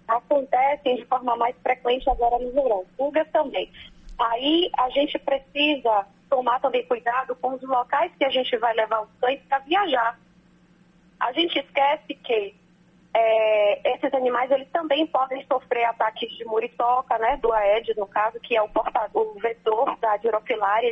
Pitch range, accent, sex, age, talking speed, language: 225-275 Hz, Brazilian, female, 20-39, 150 wpm, Portuguese